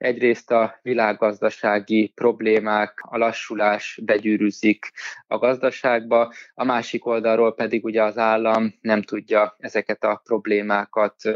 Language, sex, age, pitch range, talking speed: Hungarian, male, 20-39, 110-125 Hz, 110 wpm